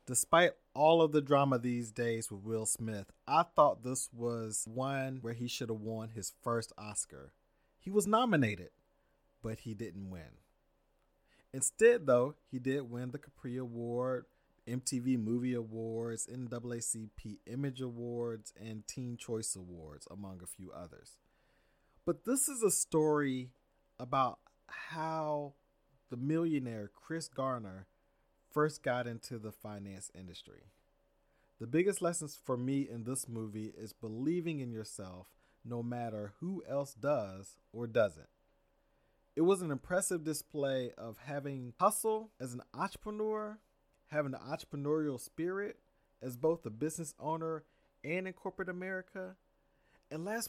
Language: English